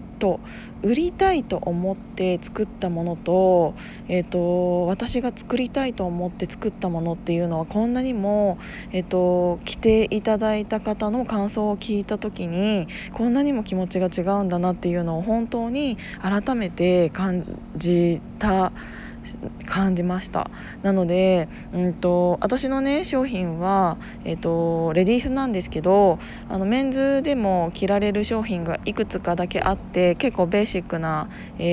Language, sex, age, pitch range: Japanese, female, 20-39, 180-220 Hz